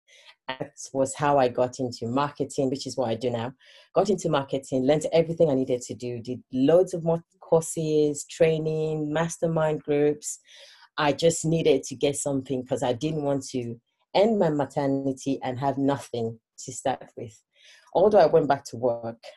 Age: 30-49